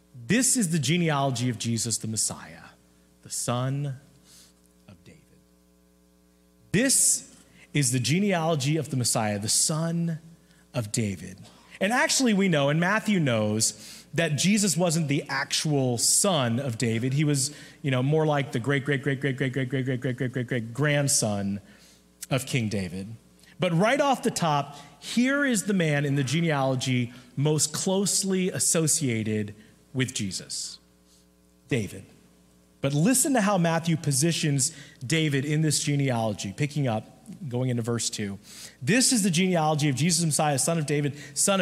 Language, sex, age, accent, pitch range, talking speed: English, male, 30-49, American, 115-155 Hz, 155 wpm